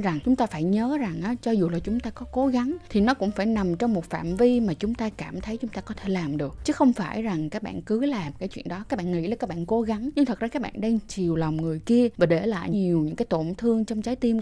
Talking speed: 310 wpm